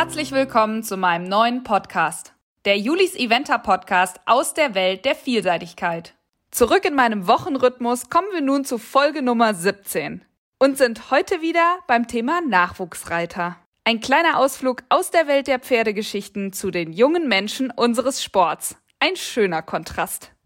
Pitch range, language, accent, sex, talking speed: 210-270 Hz, German, German, female, 145 wpm